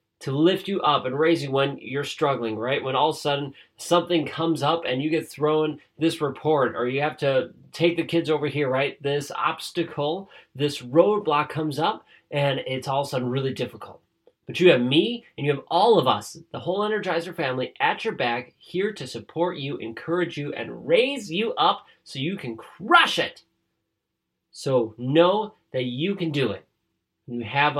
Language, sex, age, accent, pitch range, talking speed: English, male, 30-49, American, 130-170 Hz, 195 wpm